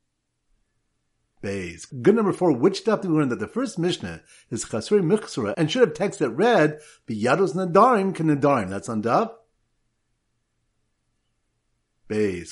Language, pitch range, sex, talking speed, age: English, 120-195 Hz, male, 145 wpm, 50-69